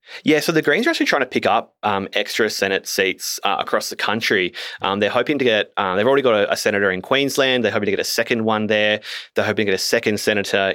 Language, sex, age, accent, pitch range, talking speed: English, male, 20-39, Australian, 95-110 Hz, 260 wpm